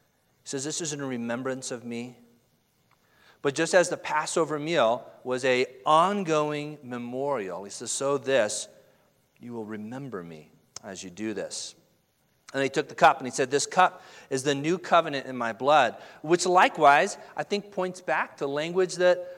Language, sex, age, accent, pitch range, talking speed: English, male, 40-59, American, 125-160 Hz, 175 wpm